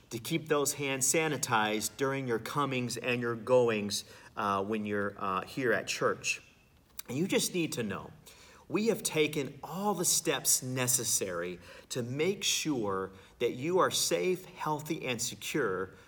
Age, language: 40-59, English